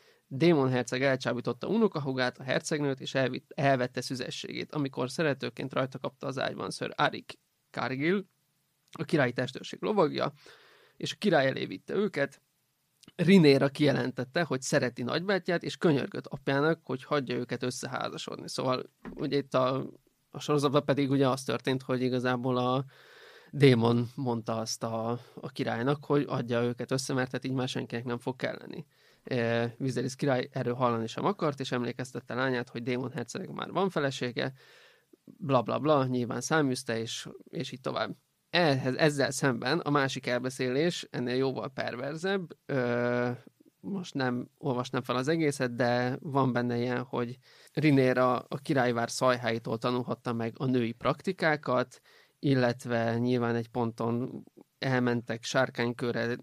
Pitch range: 125-145 Hz